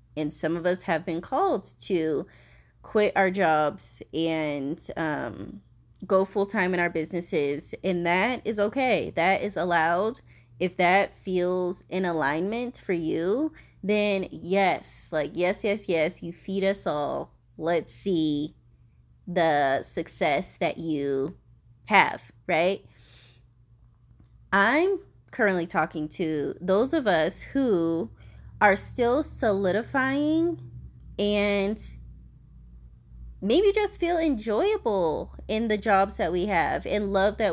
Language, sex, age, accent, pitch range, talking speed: English, female, 20-39, American, 135-210 Hz, 120 wpm